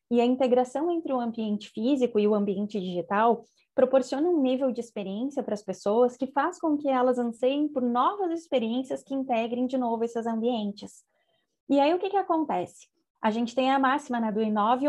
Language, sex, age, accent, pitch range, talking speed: Portuguese, female, 20-39, Brazilian, 230-280 Hz, 200 wpm